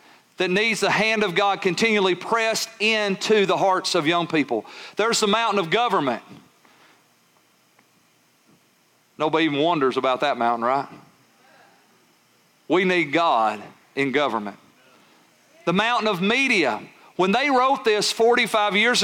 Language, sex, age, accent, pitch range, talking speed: English, male, 40-59, American, 195-245 Hz, 130 wpm